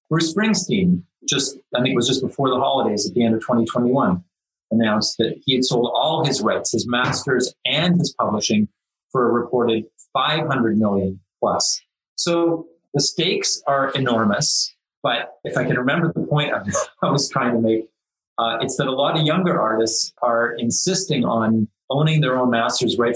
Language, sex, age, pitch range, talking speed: English, male, 30-49, 115-155 Hz, 180 wpm